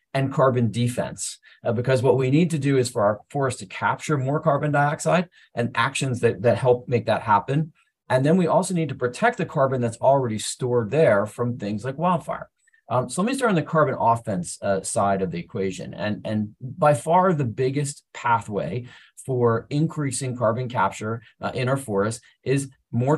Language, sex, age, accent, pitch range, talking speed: English, male, 30-49, American, 110-135 Hz, 195 wpm